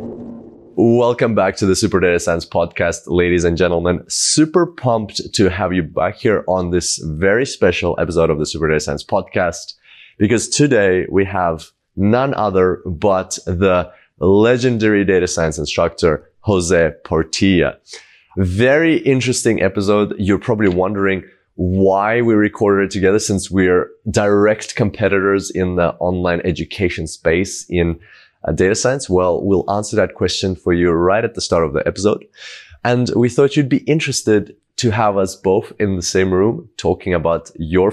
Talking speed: 155 wpm